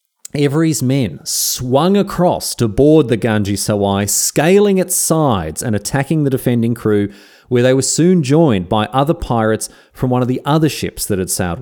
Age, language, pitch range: 30-49, English, 105-145 Hz